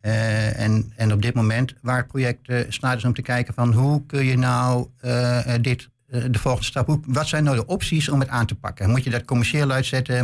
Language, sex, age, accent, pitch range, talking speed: Dutch, male, 60-79, Dutch, 120-140 Hz, 235 wpm